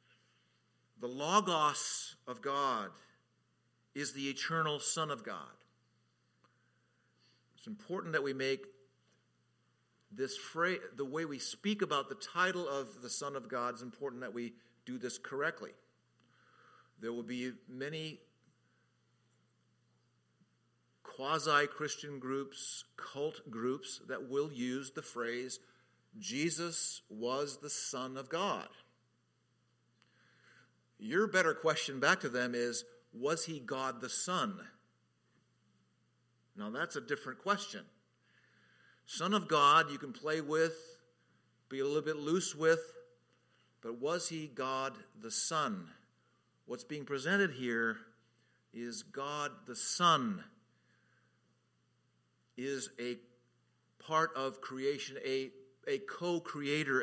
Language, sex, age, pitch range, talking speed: English, male, 50-69, 120-155 Hz, 115 wpm